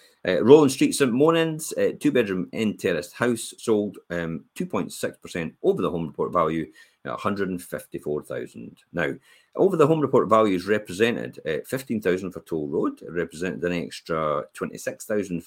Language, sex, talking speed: English, male, 120 wpm